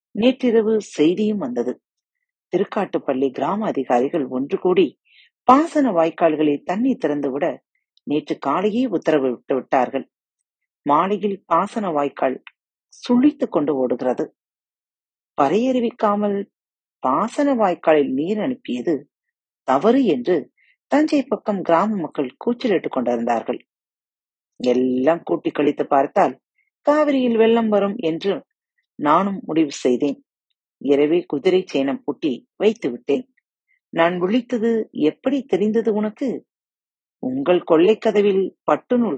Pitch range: 150-245 Hz